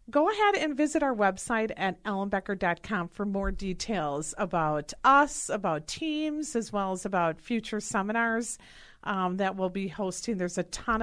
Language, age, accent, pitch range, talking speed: English, 50-69, American, 185-245 Hz, 160 wpm